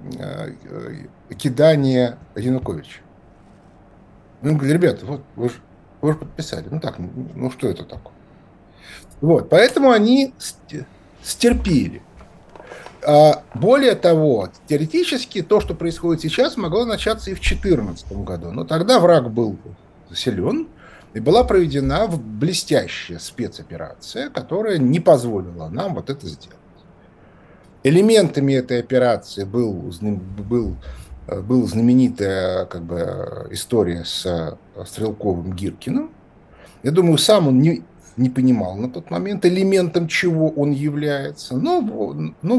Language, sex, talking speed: Russian, male, 105 wpm